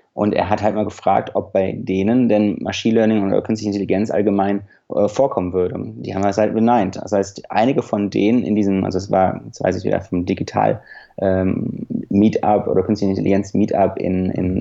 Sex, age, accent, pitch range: male, 30-49, German, 100-110 Hz